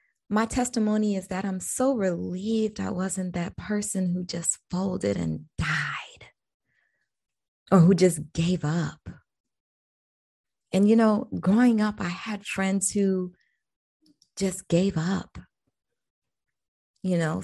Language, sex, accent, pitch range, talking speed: English, female, American, 170-215 Hz, 120 wpm